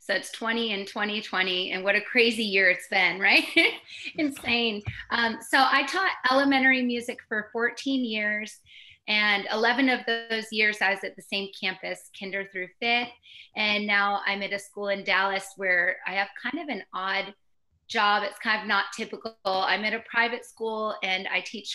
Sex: female